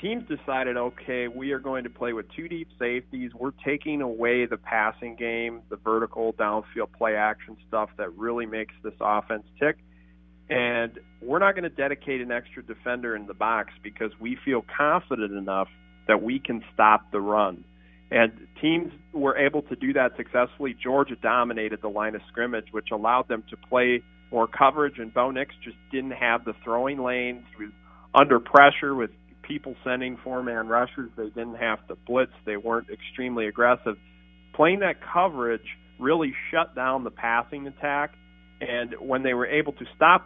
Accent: American